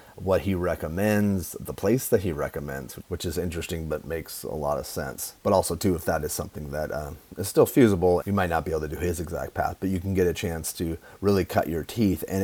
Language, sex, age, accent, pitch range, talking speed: English, male, 30-49, American, 85-100 Hz, 245 wpm